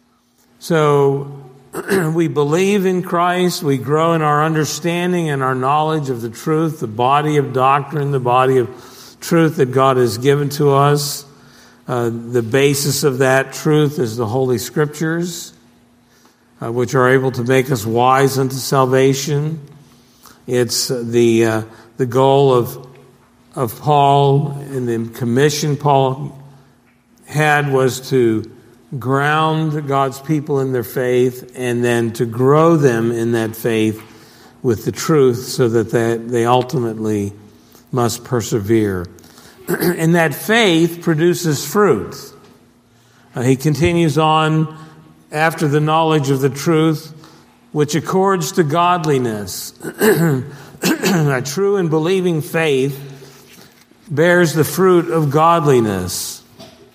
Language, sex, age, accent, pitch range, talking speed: English, male, 50-69, American, 125-155 Hz, 125 wpm